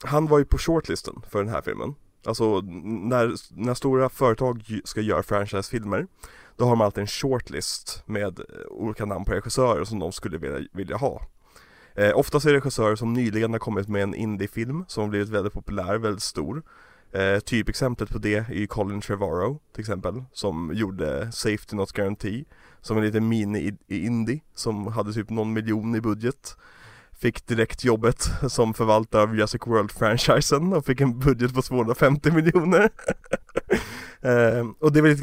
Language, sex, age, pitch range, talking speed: Swedish, male, 20-39, 105-130 Hz, 170 wpm